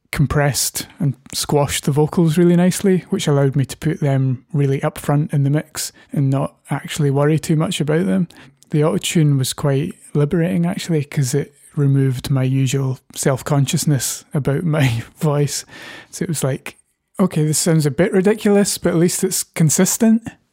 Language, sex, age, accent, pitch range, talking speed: English, male, 20-39, British, 140-170 Hz, 165 wpm